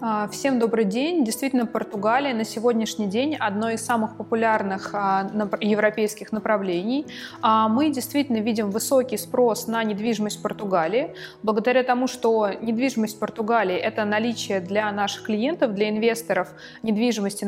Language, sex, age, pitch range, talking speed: Russian, female, 20-39, 195-235 Hz, 130 wpm